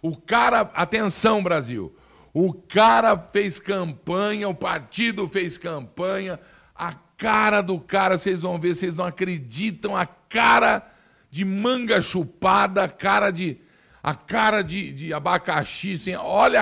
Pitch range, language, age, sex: 150-190 Hz, Portuguese, 50-69, male